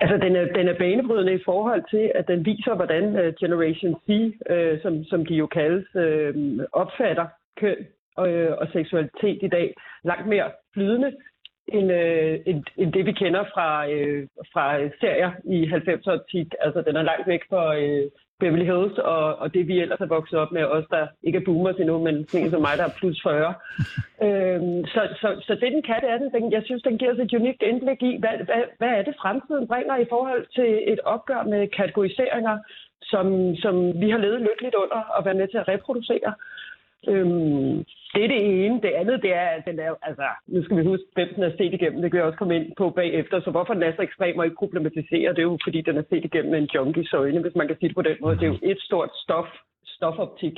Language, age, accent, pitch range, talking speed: Danish, 40-59, native, 165-205 Hz, 220 wpm